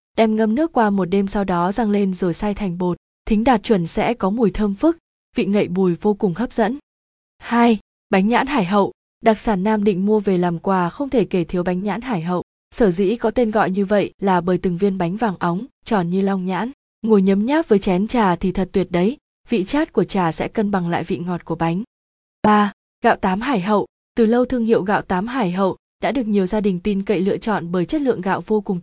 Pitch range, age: 185-225 Hz, 20-39